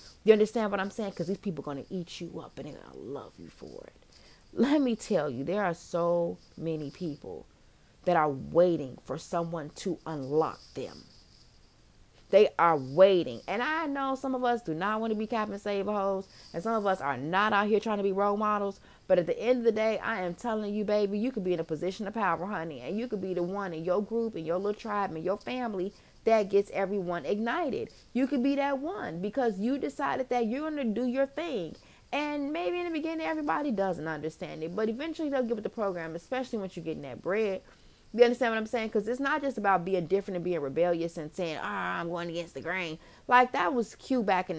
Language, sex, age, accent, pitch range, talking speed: English, female, 30-49, American, 175-240 Hz, 235 wpm